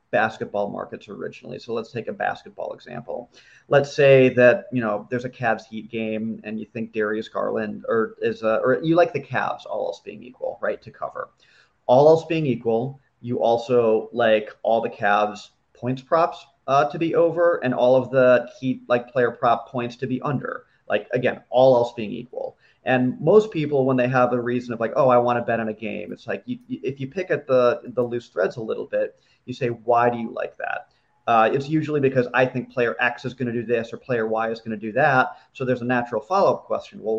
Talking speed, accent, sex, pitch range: 230 wpm, American, male, 115-140 Hz